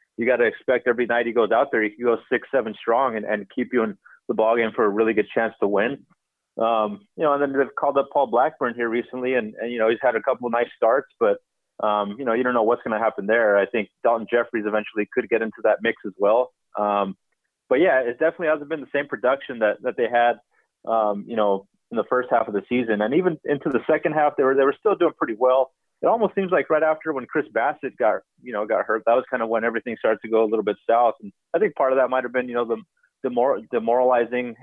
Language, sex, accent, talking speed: English, male, American, 270 wpm